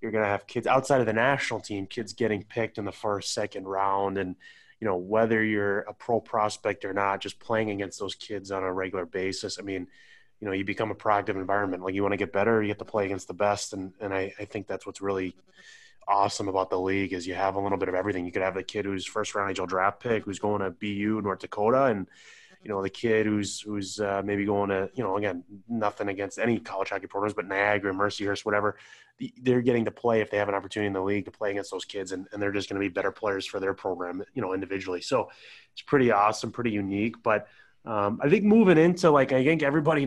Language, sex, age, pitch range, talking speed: English, male, 20-39, 100-115 Hz, 250 wpm